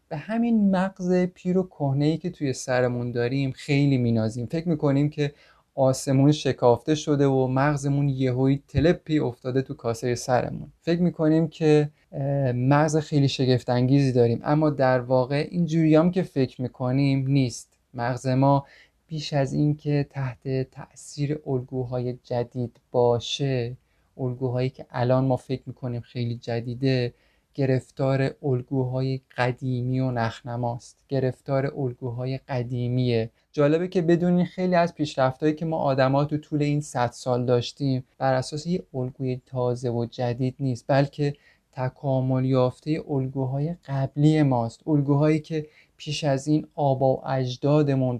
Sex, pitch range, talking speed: male, 125-150 Hz, 135 wpm